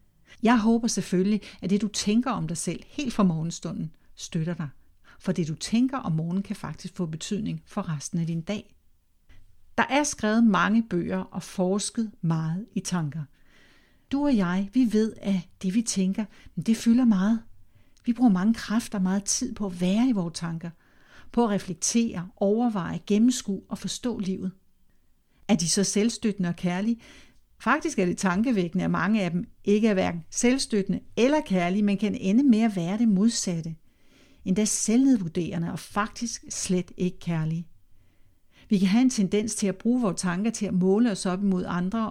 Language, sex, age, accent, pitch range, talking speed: Danish, female, 60-79, native, 175-225 Hz, 180 wpm